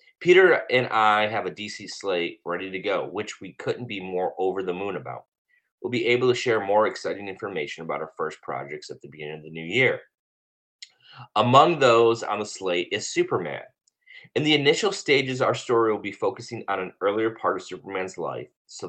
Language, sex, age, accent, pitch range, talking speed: English, male, 30-49, American, 90-135 Hz, 200 wpm